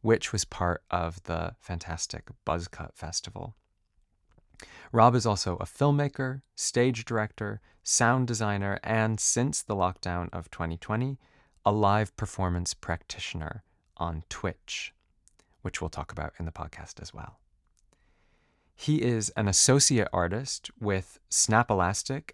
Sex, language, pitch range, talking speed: male, English, 85-110 Hz, 125 wpm